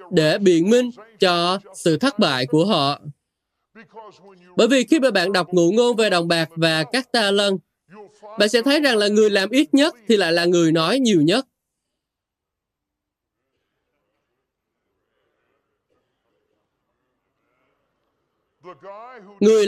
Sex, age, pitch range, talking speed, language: male, 20-39, 180-250 Hz, 125 wpm, Vietnamese